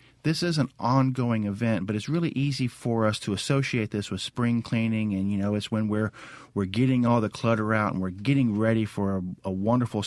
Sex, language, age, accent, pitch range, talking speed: male, English, 50-69, American, 100-125 Hz, 220 wpm